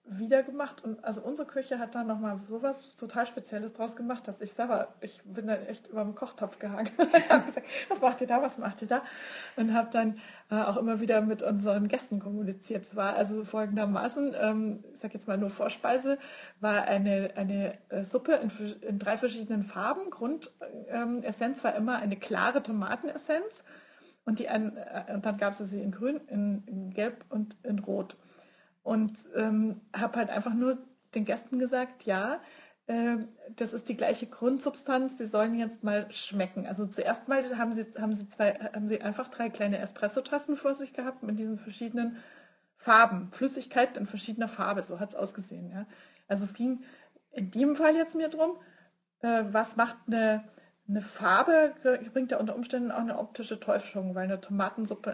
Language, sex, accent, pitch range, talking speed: German, female, German, 210-255 Hz, 175 wpm